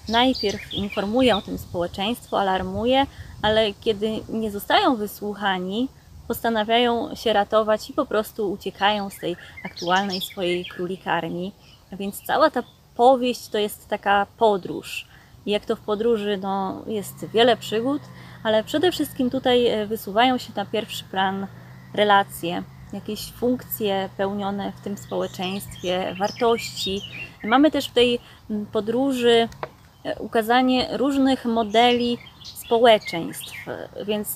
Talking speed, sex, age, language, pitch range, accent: 120 wpm, female, 20-39, Polish, 195-230 Hz, native